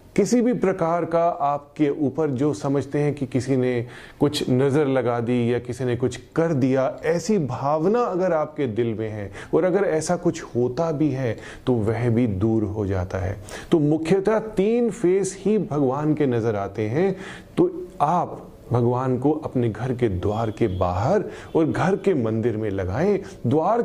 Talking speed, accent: 175 wpm, native